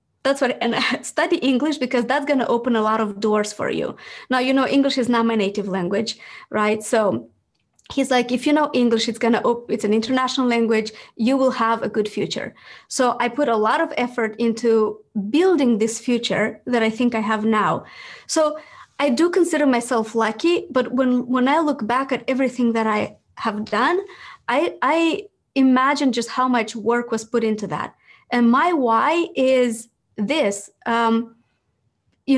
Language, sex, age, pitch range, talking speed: English, female, 20-39, 225-275 Hz, 180 wpm